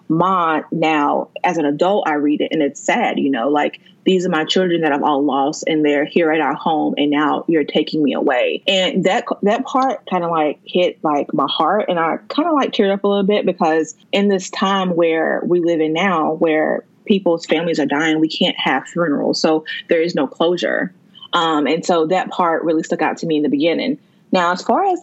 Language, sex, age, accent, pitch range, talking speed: English, female, 20-39, American, 160-200 Hz, 230 wpm